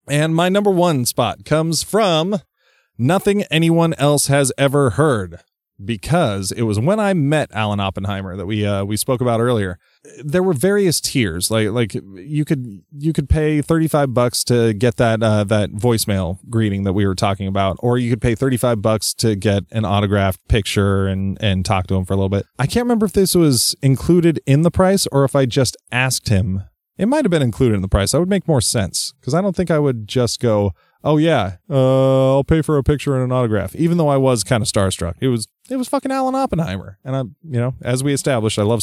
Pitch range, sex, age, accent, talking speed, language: 105-155 Hz, male, 20-39, American, 225 wpm, English